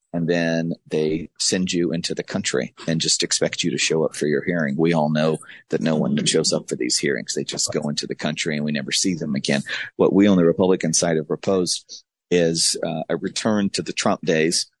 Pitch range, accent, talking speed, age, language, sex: 80-90 Hz, American, 230 wpm, 40-59, English, male